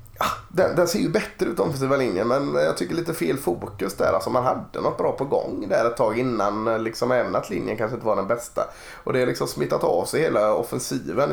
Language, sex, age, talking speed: Swedish, male, 20-39, 245 wpm